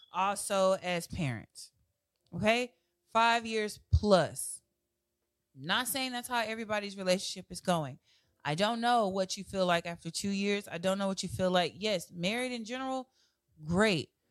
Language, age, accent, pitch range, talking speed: English, 20-39, American, 175-230 Hz, 160 wpm